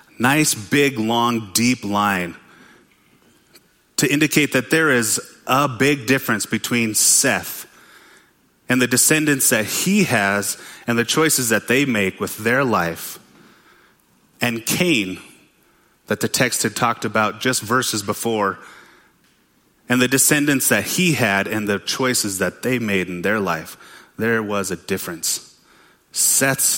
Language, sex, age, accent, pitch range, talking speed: English, male, 30-49, American, 105-135 Hz, 135 wpm